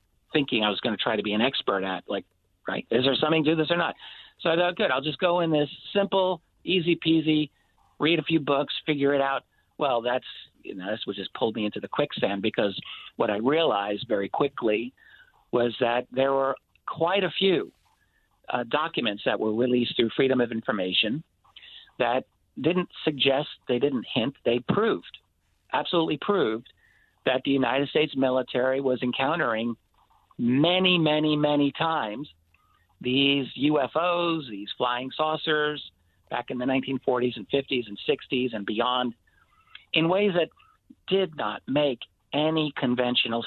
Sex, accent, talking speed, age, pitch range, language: male, American, 165 wpm, 50-69, 120-160 Hz, English